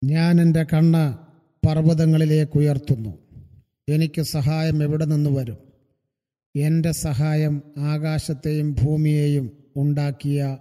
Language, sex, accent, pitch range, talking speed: Malayalam, male, native, 140-160 Hz, 85 wpm